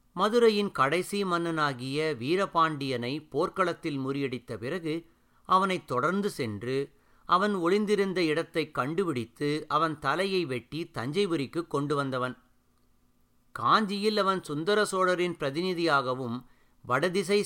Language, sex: Tamil, male